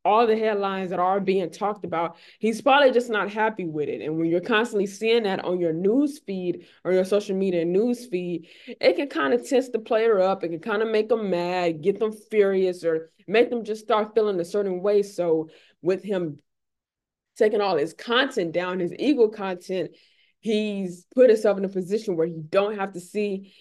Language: English